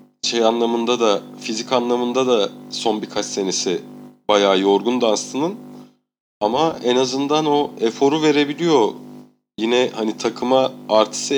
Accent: native